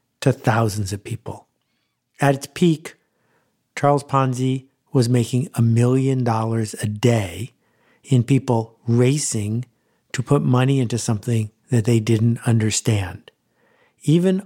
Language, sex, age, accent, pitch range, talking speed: English, male, 50-69, American, 115-140 Hz, 120 wpm